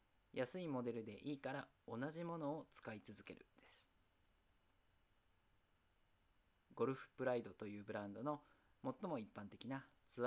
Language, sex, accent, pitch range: Japanese, male, native, 100-140 Hz